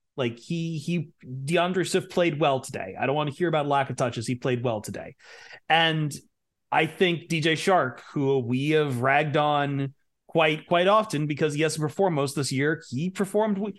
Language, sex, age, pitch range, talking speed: English, male, 30-49, 130-175 Hz, 190 wpm